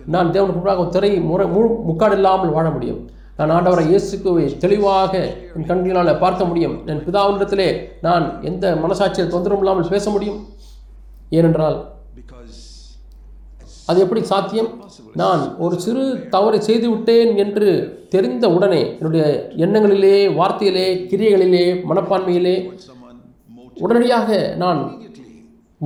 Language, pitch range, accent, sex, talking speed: Tamil, 160-195 Hz, native, male, 105 wpm